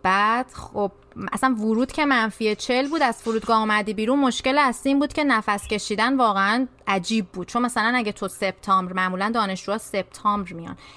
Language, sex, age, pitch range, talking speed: Persian, female, 20-39, 200-275 Hz, 170 wpm